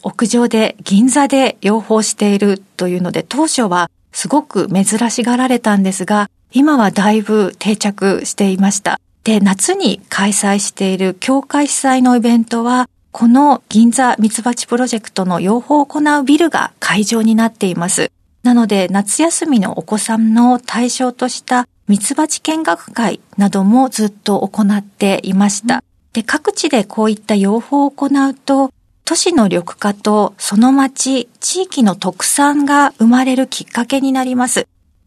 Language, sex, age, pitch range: Japanese, female, 40-59, 200-265 Hz